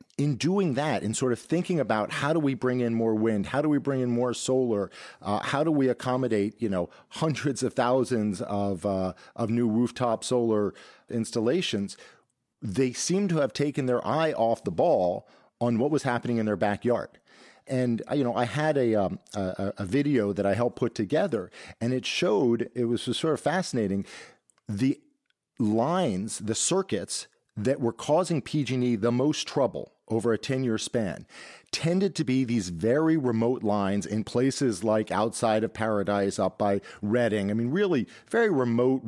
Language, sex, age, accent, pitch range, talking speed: English, male, 40-59, American, 110-140 Hz, 180 wpm